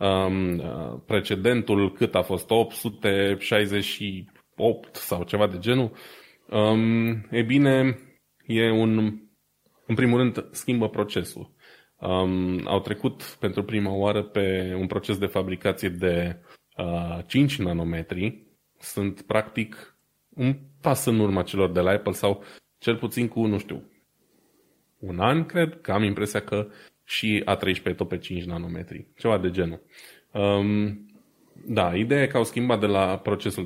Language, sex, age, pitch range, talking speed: Romanian, male, 20-39, 95-115 Hz, 140 wpm